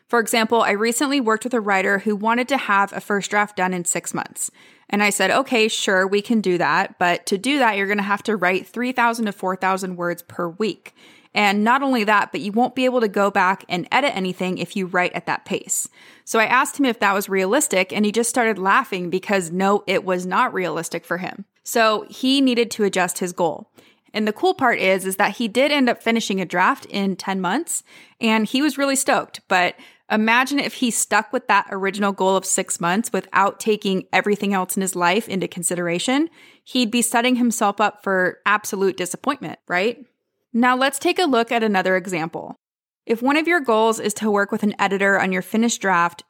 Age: 20-39